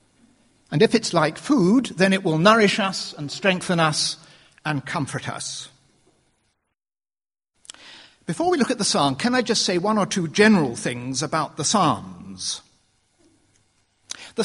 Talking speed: 145 wpm